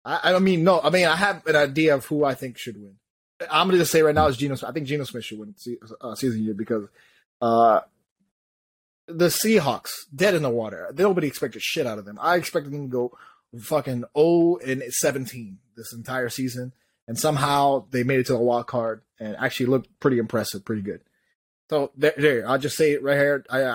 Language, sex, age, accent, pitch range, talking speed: English, male, 20-39, American, 125-175 Hz, 220 wpm